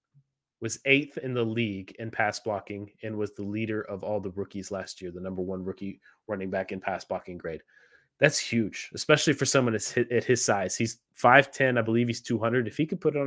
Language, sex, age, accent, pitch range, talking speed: English, male, 30-49, American, 105-125 Hz, 230 wpm